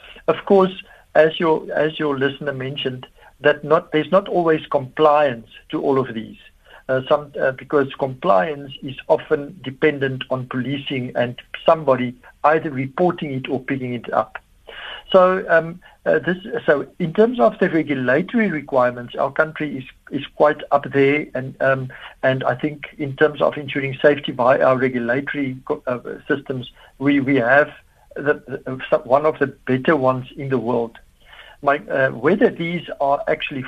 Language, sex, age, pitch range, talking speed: English, male, 60-79, 130-155 Hz, 160 wpm